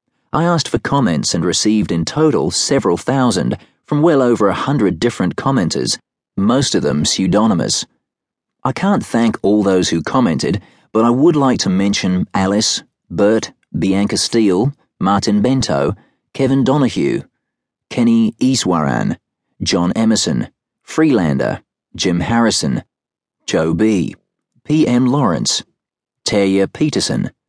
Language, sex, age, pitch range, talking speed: English, male, 40-59, 95-120 Hz, 120 wpm